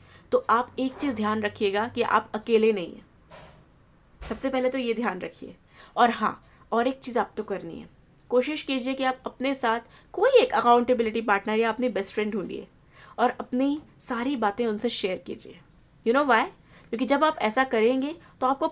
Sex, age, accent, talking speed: female, 20-39, native, 185 wpm